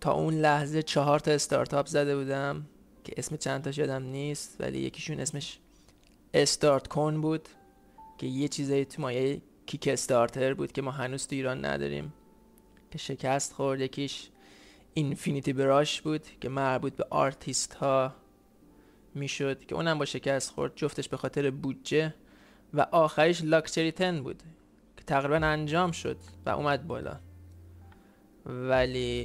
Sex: male